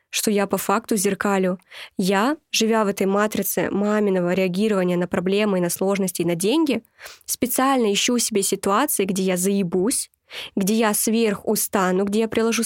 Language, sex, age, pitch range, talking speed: Russian, female, 20-39, 195-230 Hz, 150 wpm